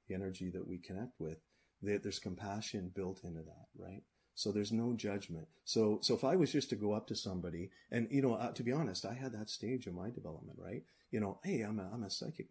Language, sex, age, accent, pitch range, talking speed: English, male, 30-49, American, 95-110 Hz, 240 wpm